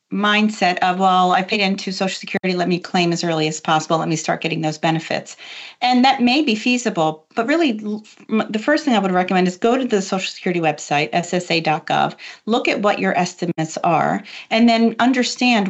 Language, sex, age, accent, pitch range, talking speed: English, female, 40-59, American, 170-205 Hz, 195 wpm